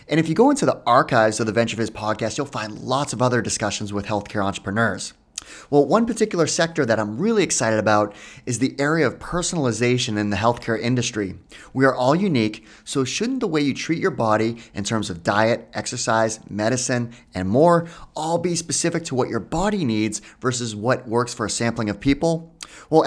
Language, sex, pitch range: English, male, 110-150 Hz